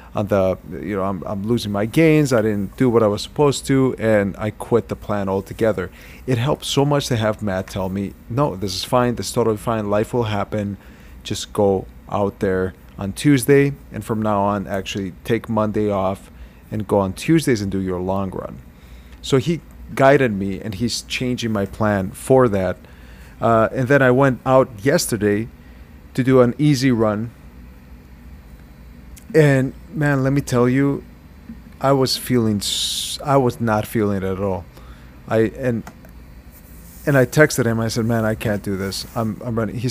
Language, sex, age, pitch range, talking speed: English, male, 30-49, 95-130 Hz, 180 wpm